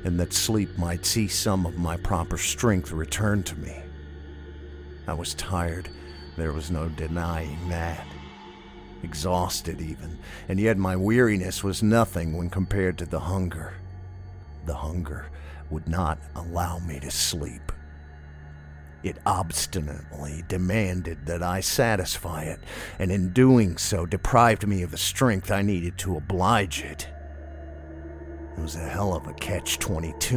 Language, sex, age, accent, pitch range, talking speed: English, male, 50-69, American, 75-95 Hz, 140 wpm